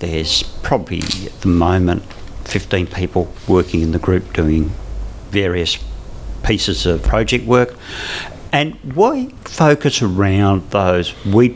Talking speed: 120 wpm